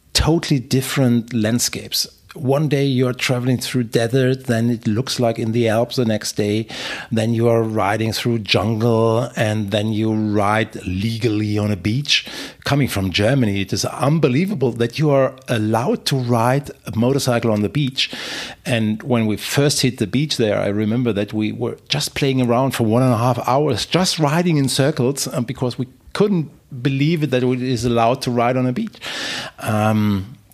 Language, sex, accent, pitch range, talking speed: English, male, German, 100-125 Hz, 180 wpm